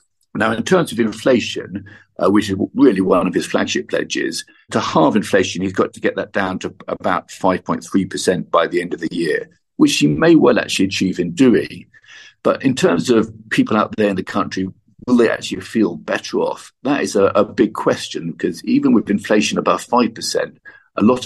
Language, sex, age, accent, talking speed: English, male, 50-69, British, 200 wpm